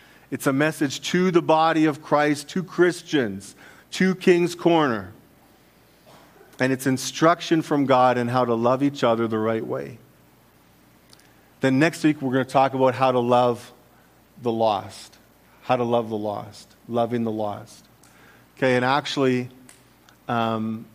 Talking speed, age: 150 wpm, 40-59